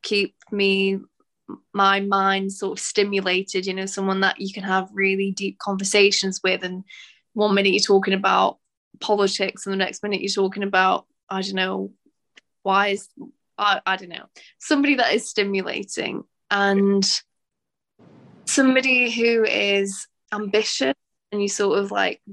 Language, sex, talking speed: English, female, 145 wpm